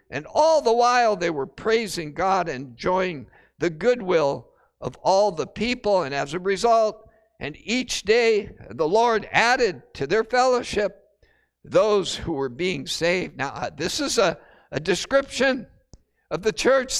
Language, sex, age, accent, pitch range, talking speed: English, male, 60-79, American, 180-250 Hz, 150 wpm